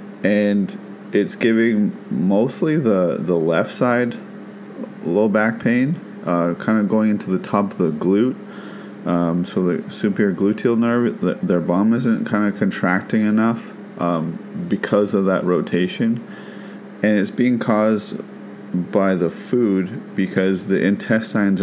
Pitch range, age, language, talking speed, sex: 90-110 Hz, 30-49, English, 140 wpm, male